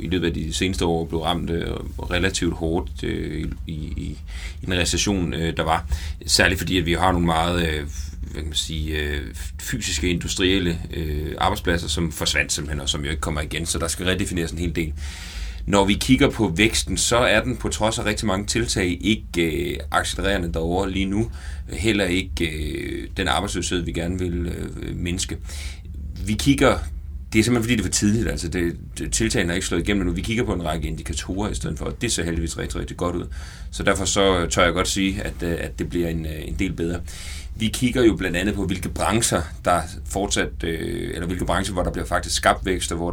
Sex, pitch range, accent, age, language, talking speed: male, 80-95 Hz, native, 30-49, Danish, 210 wpm